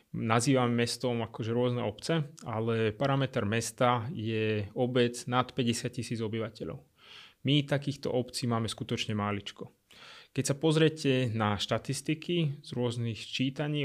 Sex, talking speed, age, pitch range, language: male, 120 wpm, 20-39, 115-135 Hz, Slovak